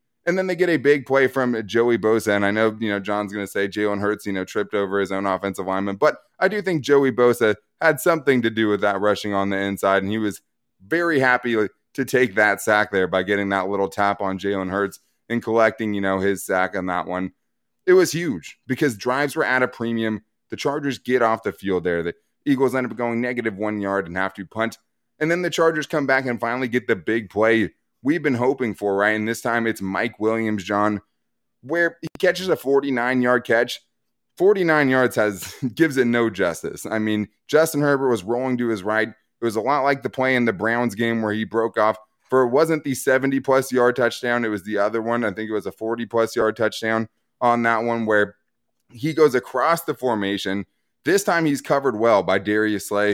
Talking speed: 220 wpm